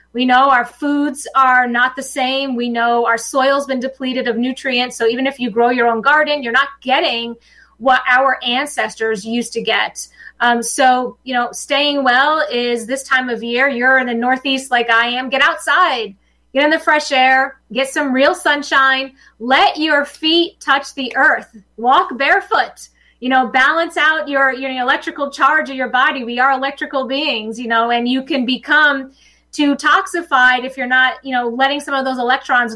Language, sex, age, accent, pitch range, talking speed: English, female, 30-49, American, 245-285 Hz, 190 wpm